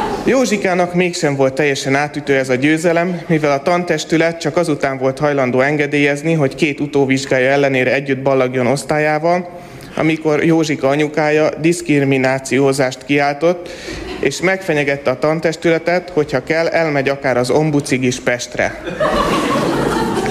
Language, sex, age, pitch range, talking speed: Hungarian, male, 30-49, 140-175 Hz, 120 wpm